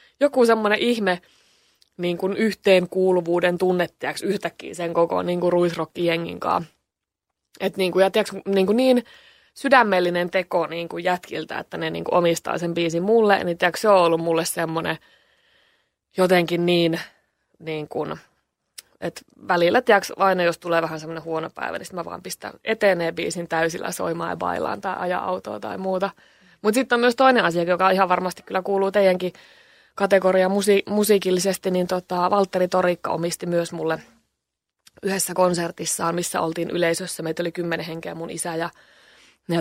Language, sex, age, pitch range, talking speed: Finnish, female, 20-39, 170-190 Hz, 150 wpm